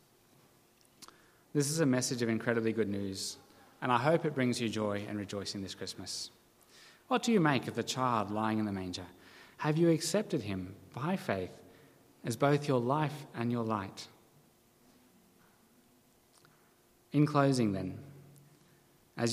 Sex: male